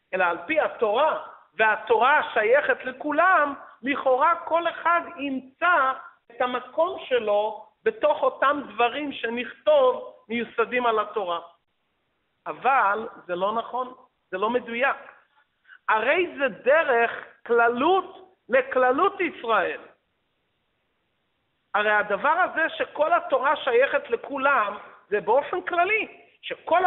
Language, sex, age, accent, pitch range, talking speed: Hebrew, male, 50-69, native, 230-320 Hz, 100 wpm